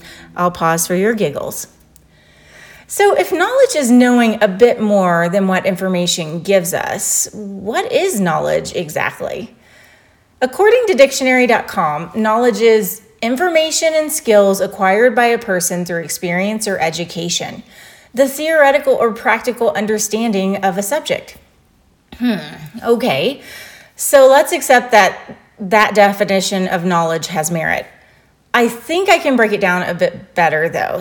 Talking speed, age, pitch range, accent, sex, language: 135 wpm, 30-49, 185-250 Hz, American, female, English